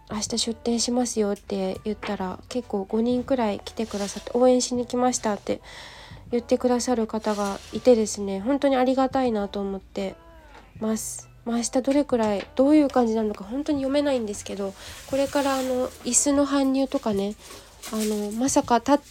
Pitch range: 210-270 Hz